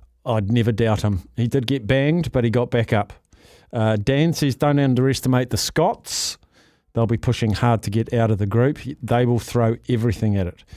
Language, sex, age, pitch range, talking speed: English, male, 50-69, 110-145 Hz, 200 wpm